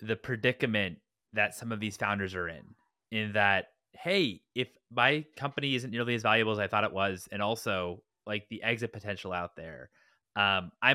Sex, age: male, 20-39